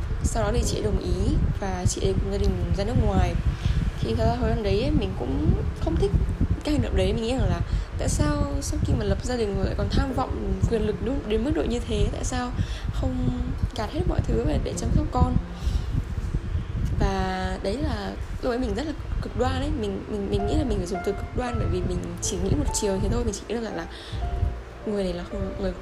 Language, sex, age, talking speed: Vietnamese, female, 10-29, 245 wpm